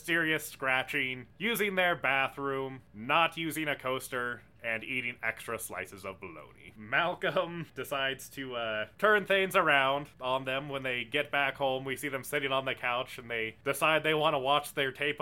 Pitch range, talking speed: 125-160 Hz, 180 wpm